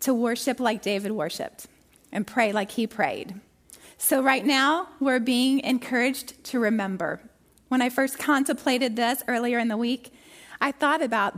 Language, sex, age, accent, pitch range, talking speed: English, female, 30-49, American, 230-275 Hz, 160 wpm